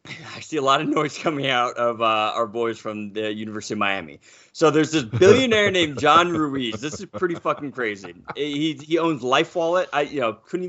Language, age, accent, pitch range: English, 30-49, American, 115-160 Hz